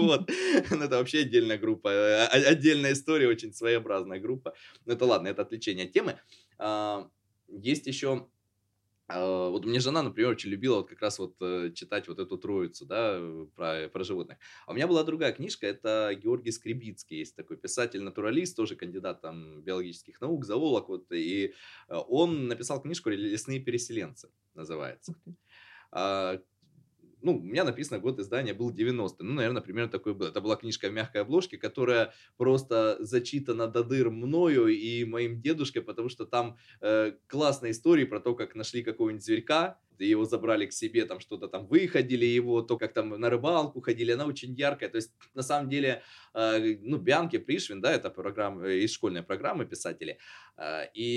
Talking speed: 170 wpm